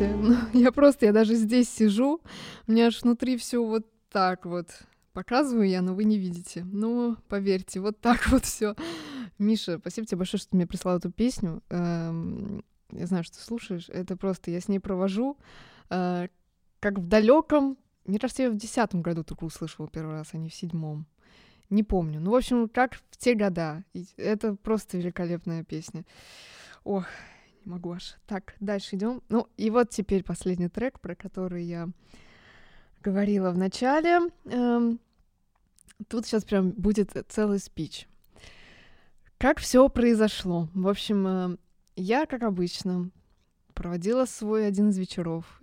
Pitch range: 180-230 Hz